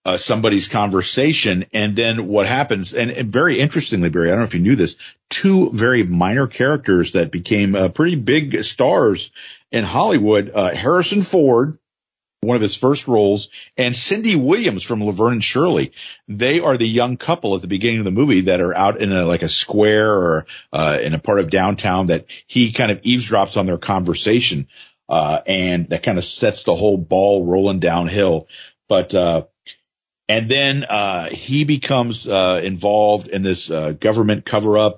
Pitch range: 95-120 Hz